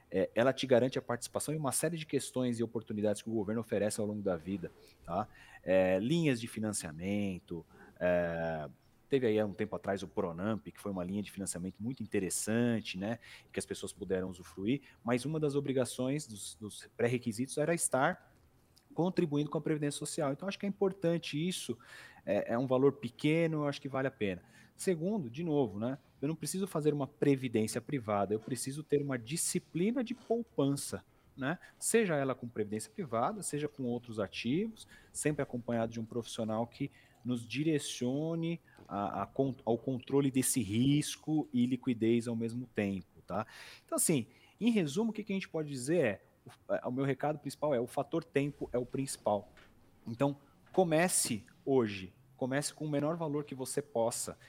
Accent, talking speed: Brazilian, 170 wpm